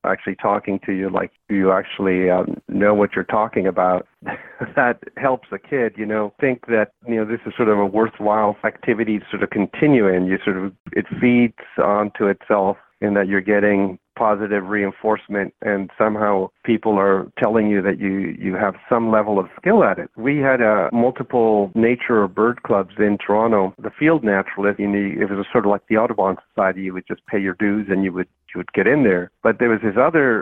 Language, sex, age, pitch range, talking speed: English, male, 50-69, 100-115 Hz, 215 wpm